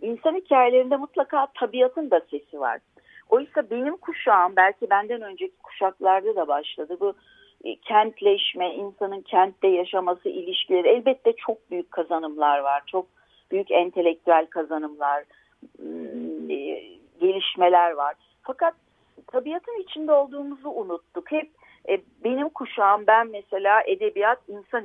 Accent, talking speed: native, 115 wpm